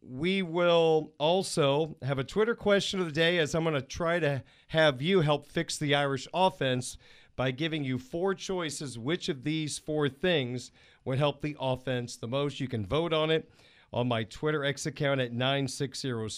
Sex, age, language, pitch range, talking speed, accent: male, 40-59, English, 125-160 Hz, 185 wpm, American